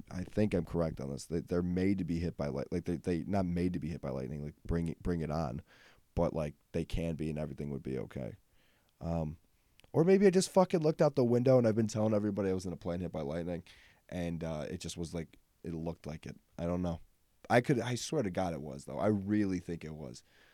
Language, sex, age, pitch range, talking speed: English, male, 20-39, 80-110 Hz, 265 wpm